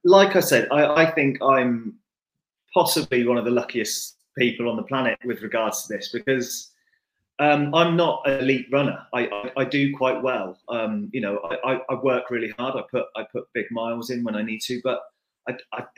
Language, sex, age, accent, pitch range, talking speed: English, male, 30-49, British, 110-140 Hz, 205 wpm